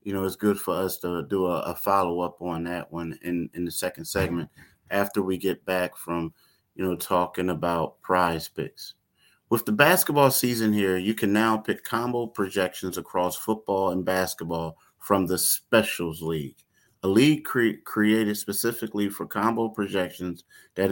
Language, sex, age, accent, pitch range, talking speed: English, male, 30-49, American, 90-105 Hz, 165 wpm